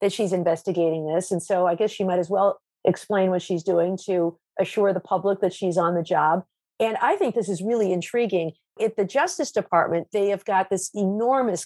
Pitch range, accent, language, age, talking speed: 185-220 Hz, American, English, 50-69, 210 wpm